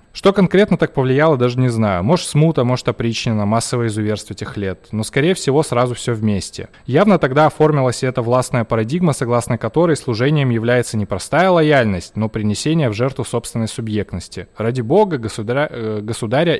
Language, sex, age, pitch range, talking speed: Russian, male, 20-39, 115-145 Hz, 165 wpm